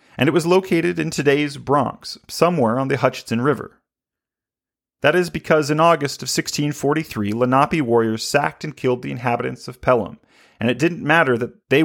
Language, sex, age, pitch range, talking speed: English, male, 40-59, 125-170 Hz, 170 wpm